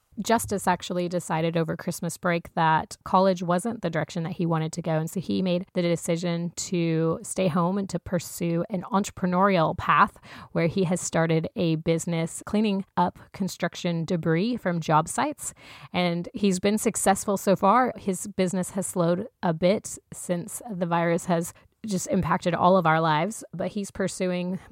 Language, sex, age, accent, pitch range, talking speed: English, female, 30-49, American, 170-195 Hz, 165 wpm